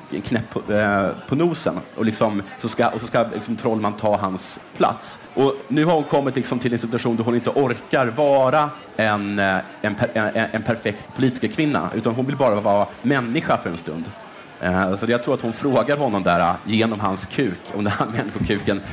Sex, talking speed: male, 200 wpm